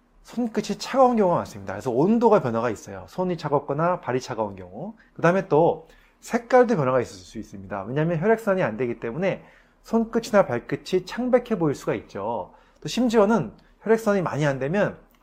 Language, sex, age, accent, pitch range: Korean, male, 30-49, native, 130-210 Hz